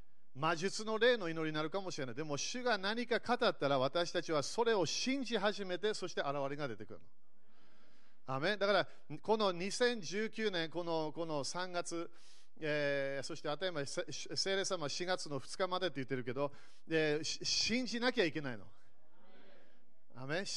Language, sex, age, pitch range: Japanese, male, 40-59, 145-205 Hz